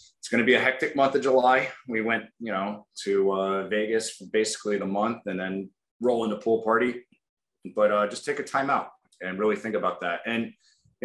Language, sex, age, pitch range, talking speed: English, male, 20-39, 95-110 Hz, 215 wpm